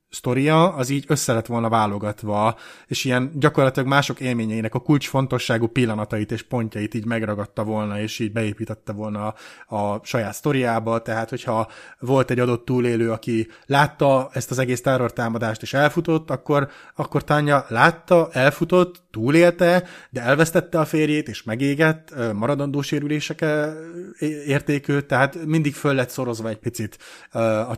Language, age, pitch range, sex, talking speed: Hungarian, 30-49, 115-145 Hz, male, 140 wpm